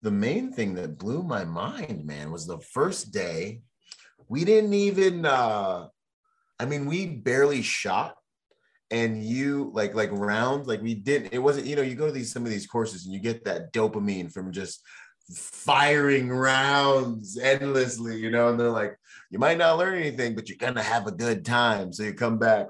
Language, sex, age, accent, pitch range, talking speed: English, male, 30-49, American, 100-125 Hz, 195 wpm